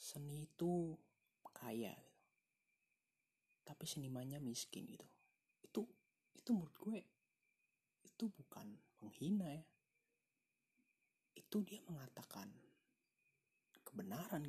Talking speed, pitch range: 85 wpm, 130-185 Hz